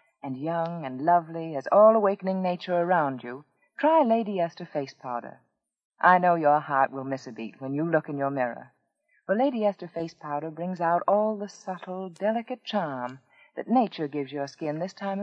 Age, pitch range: 40-59, 145-210 Hz